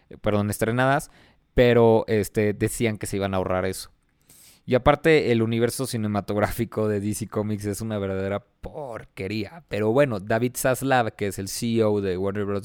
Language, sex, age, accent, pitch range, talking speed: Spanish, male, 20-39, Mexican, 105-120 Hz, 155 wpm